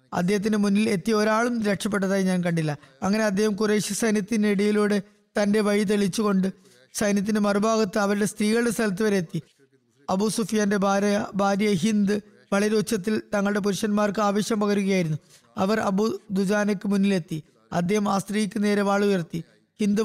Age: 20-39